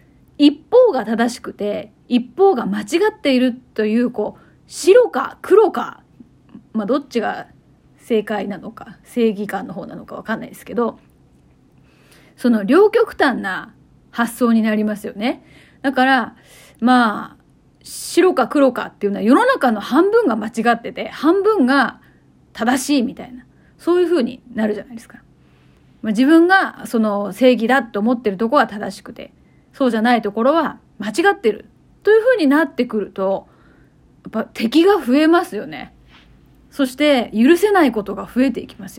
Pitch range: 220-290 Hz